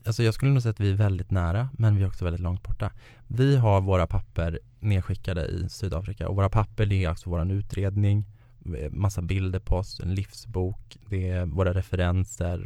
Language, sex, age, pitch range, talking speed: Swedish, male, 20-39, 95-120 Hz, 200 wpm